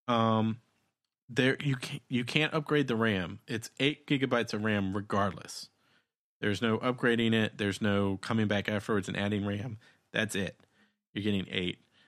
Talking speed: 160 wpm